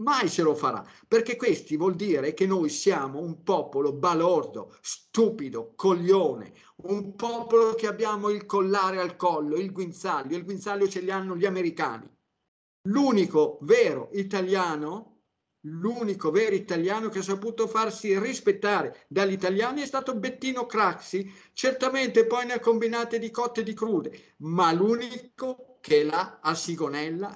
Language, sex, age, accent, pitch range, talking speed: Italian, male, 50-69, native, 170-225 Hz, 145 wpm